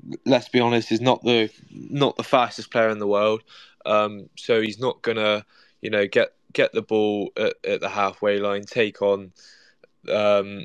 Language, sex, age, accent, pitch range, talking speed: English, male, 10-29, British, 100-115 Hz, 180 wpm